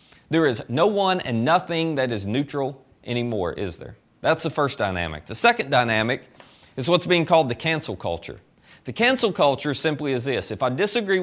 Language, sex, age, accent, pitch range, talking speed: English, male, 30-49, American, 115-160 Hz, 185 wpm